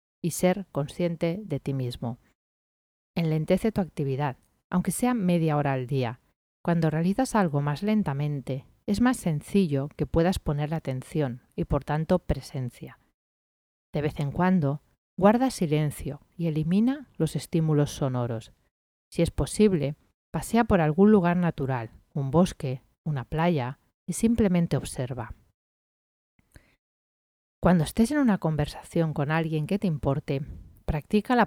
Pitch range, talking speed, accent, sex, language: 135-180 Hz, 135 wpm, Spanish, female, Spanish